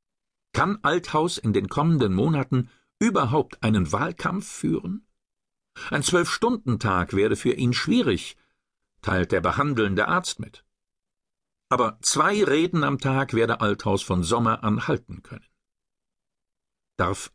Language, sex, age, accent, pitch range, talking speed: German, male, 50-69, German, 110-170 Hz, 120 wpm